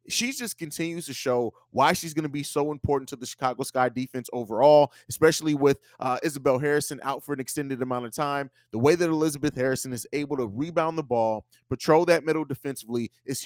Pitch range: 135-175 Hz